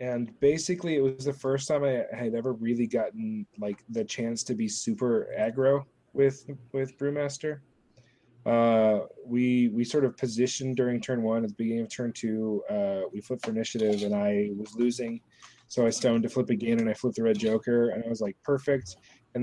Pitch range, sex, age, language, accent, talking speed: 115-135 Hz, male, 20-39, English, American, 200 wpm